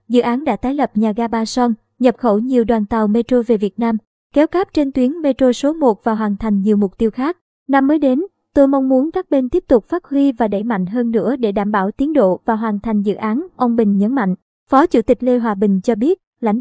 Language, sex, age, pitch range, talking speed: Vietnamese, male, 20-39, 220-275 Hz, 260 wpm